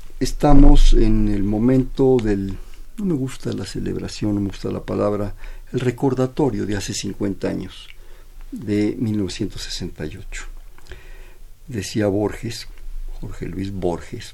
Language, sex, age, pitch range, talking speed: Spanish, male, 50-69, 100-120 Hz, 115 wpm